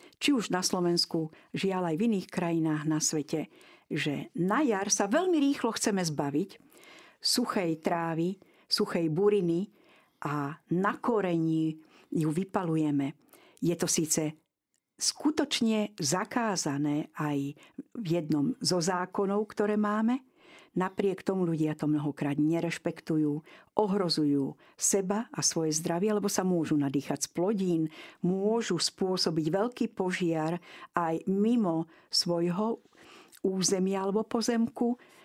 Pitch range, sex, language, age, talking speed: 160-210 Hz, female, Slovak, 50-69, 110 wpm